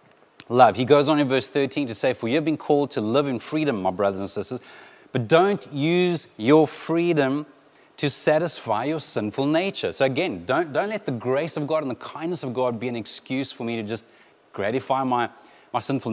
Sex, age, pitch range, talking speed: male, 30-49, 115-140 Hz, 210 wpm